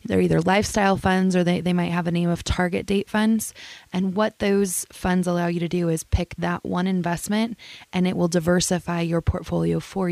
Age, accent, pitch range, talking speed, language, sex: 20-39, American, 165-180 Hz, 210 wpm, English, female